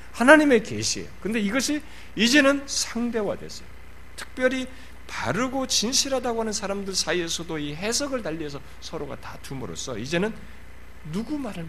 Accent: native